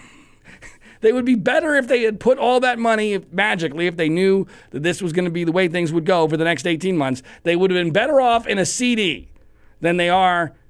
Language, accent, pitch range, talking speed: English, American, 135-190 Hz, 240 wpm